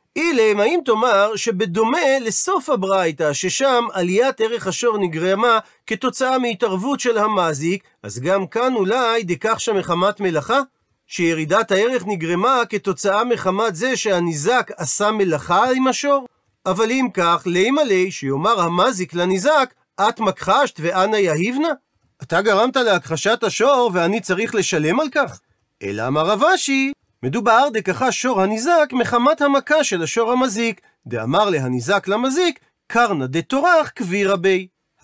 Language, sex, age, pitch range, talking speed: Hebrew, male, 40-59, 185-260 Hz, 125 wpm